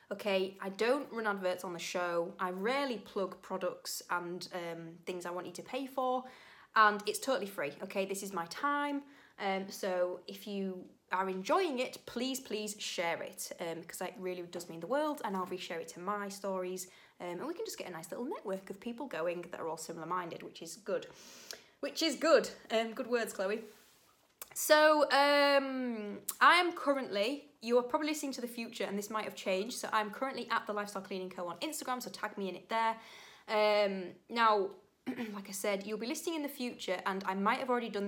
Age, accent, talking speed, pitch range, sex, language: 20-39, British, 215 wpm, 185-260 Hz, female, English